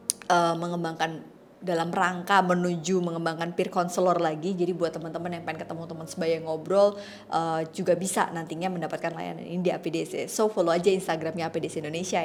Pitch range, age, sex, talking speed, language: 175-220 Hz, 20-39, female, 160 wpm, Indonesian